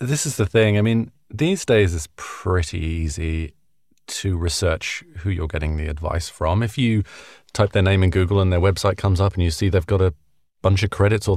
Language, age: English, 30-49